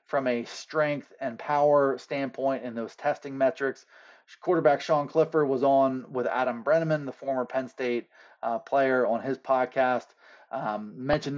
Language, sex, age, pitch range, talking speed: English, male, 30-49, 125-170 Hz, 155 wpm